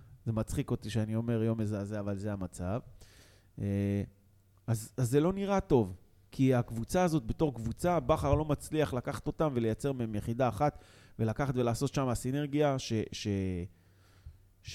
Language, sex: Hebrew, male